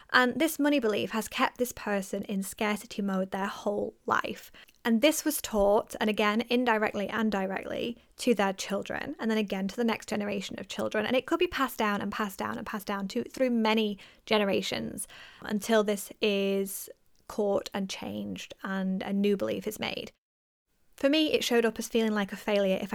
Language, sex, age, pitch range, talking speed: English, female, 20-39, 205-235 Hz, 190 wpm